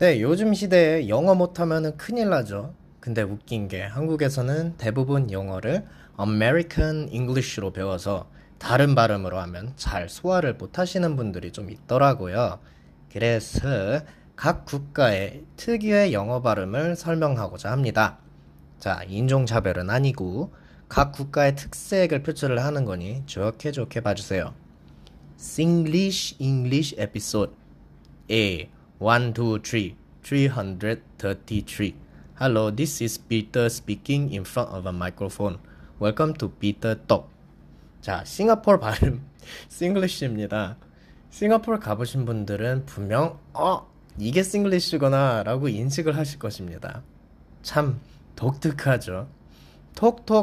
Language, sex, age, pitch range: Korean, male, 20-39, 100-155 Hz